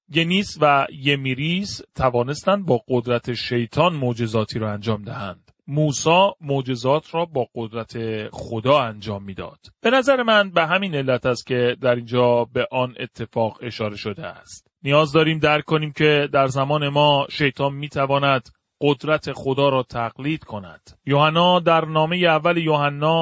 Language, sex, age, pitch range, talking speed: Persian, male, 30-49, 130-155 Hz, 145 wpm